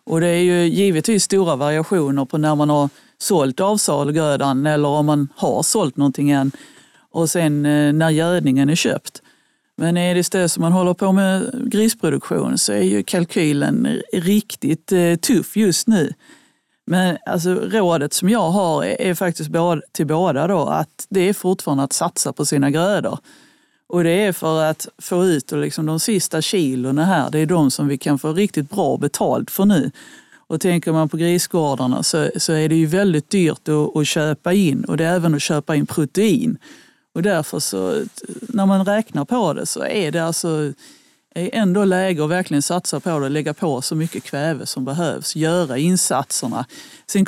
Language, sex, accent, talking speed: Swedish, female, native, 175 wpm